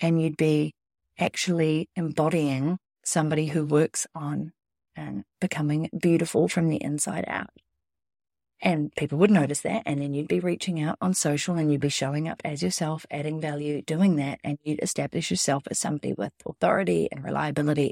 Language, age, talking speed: English, 40-59, 170 wpm